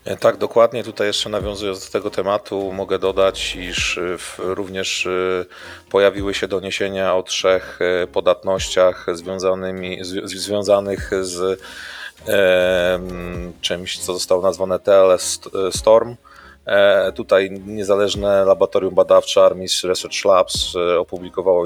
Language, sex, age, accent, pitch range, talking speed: Polish, male, 30-49, native, 90-115 Hz, 95 wpm